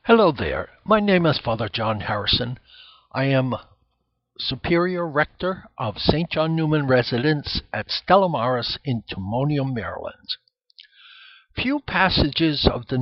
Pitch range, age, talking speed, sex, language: 125-170 Hz, 60-79, 120 wpm, male, English